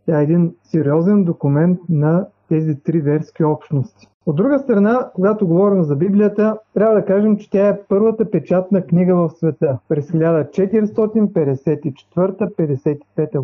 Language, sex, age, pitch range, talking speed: Bulgarian, male, 40-59, 165-205 Hz, 140 wpm